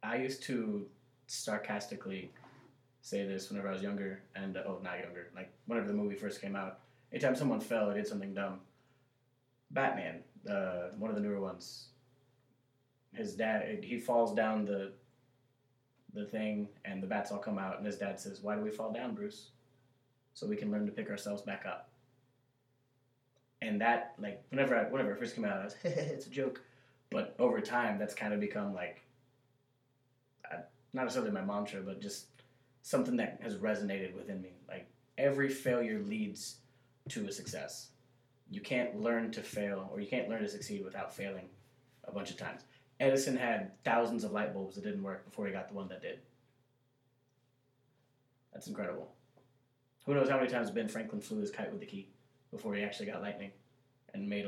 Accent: American